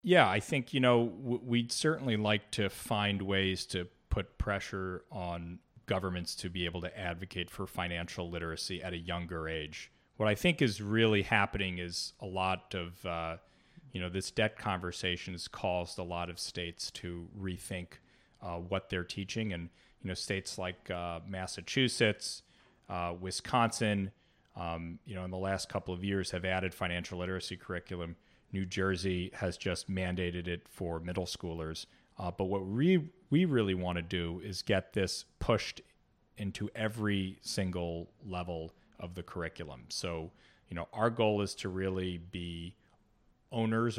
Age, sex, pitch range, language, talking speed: 30-49, male, 85-105 Hz, English, 160 wpm